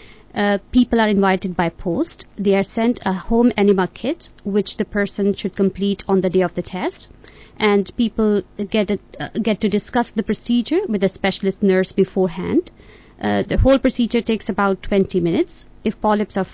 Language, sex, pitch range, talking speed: English, female, 190-225 Hz, 180 wpm